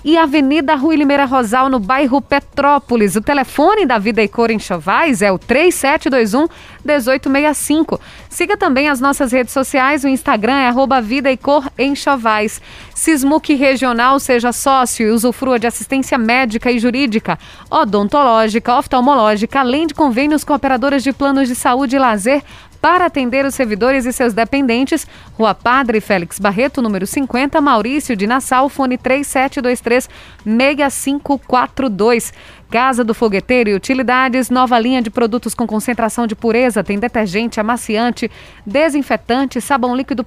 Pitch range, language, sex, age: 235-280 Hz, Portuguese, female, 20-39